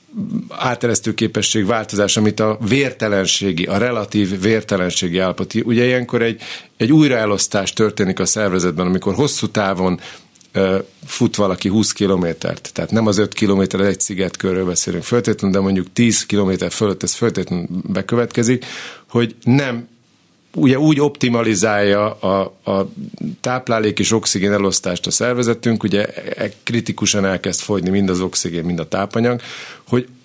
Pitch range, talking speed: 95-120 Hz, 135 wpm